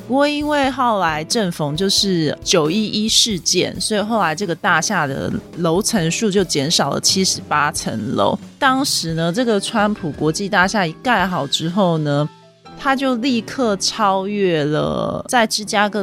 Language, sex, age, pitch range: Chinese, female, 20-39, 160-215 Hz